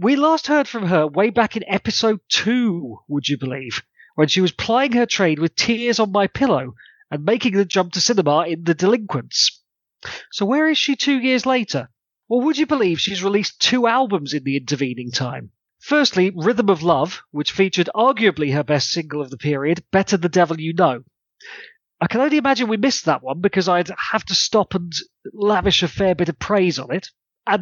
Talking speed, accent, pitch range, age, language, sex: 200 wpm, British, 150-230 Hz, 30-49, English, male